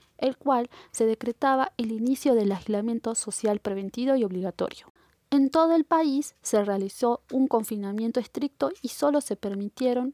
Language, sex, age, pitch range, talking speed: Spanish, female, 20-39, 200-260 Hz, 150 wpm